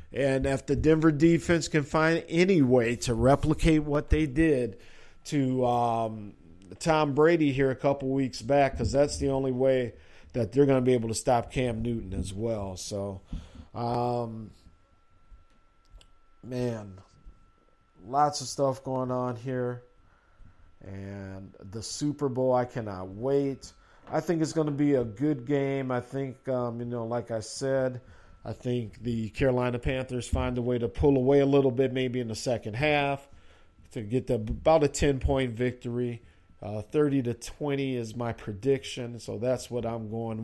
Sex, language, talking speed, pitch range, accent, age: male, English, 165 wpm, 115-145 Hz, American, 50-69